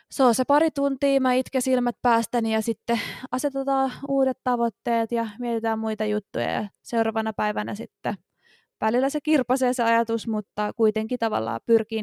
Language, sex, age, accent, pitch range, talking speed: Finnish, female, 20-39, native, 215-255 Hz, 155 wpm